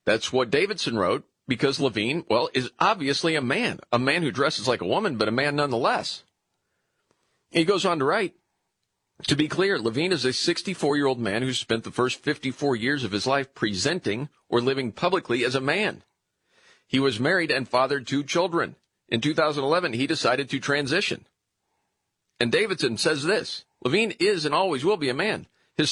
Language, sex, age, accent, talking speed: English, male, 40-59, American, 180 wpm